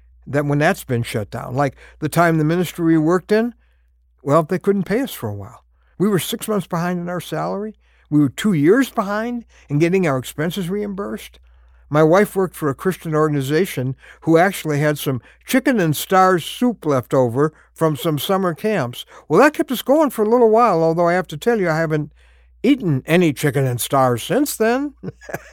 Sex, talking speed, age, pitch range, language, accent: male, 200 wpm, 60-79, 130-200 Hz, English, American